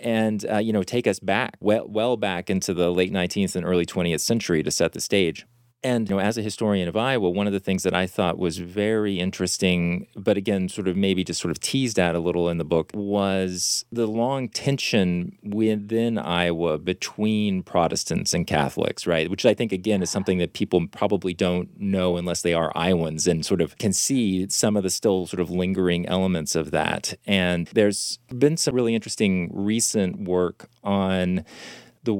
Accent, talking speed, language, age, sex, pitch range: American, 200 wpm, English, 30-49, male, 90-105 Hz